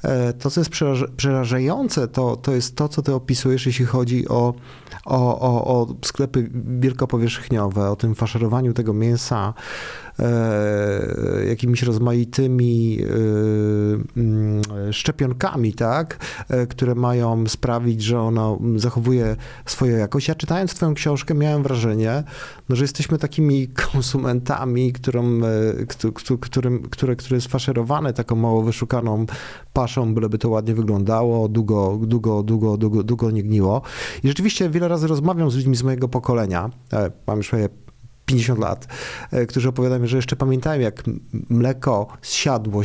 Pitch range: 115-135 Hz